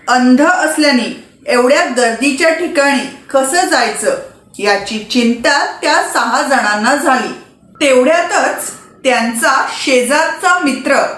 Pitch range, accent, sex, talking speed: 250-330 Hz, native, female, 90 wpm